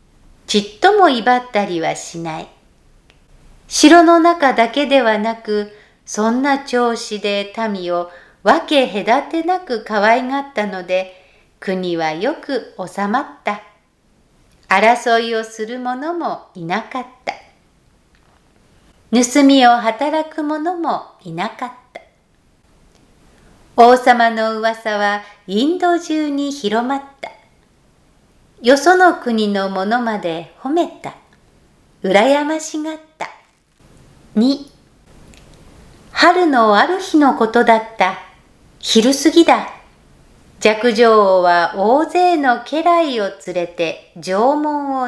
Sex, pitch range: female, 210-290 Hz